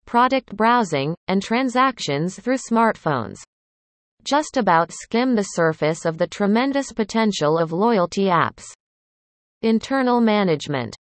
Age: 30-49